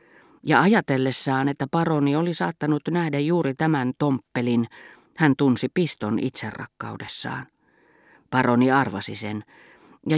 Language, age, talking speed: Finnish, 40-59, 105 wpm